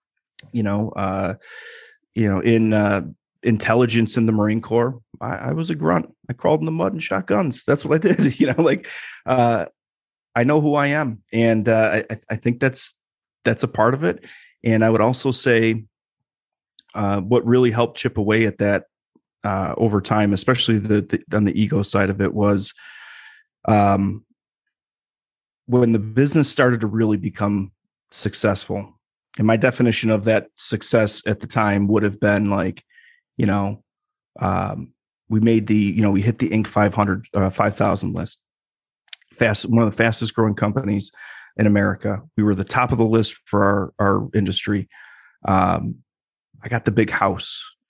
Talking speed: 175 wpm